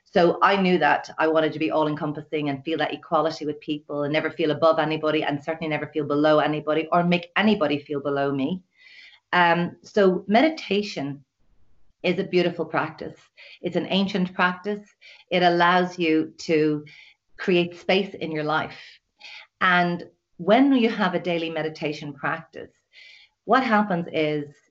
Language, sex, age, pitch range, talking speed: English, female, 40-59, 155-195 Hz, 155 wpm